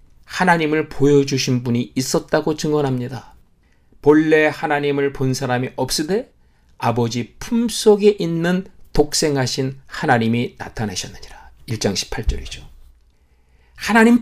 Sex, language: male, Korean